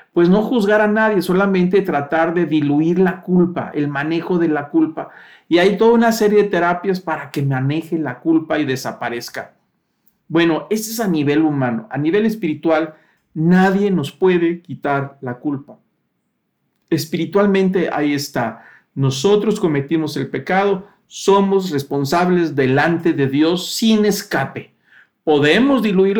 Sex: male